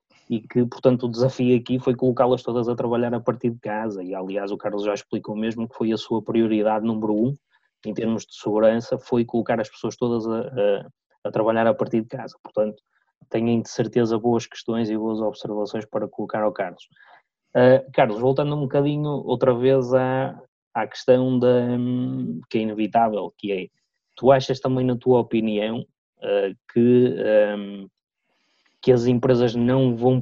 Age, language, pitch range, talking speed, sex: 20-39, Portuguese, 110-125 Hz, 180 wpm, male